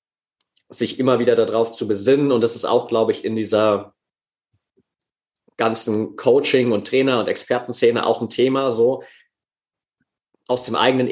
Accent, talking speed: German, 145 wpm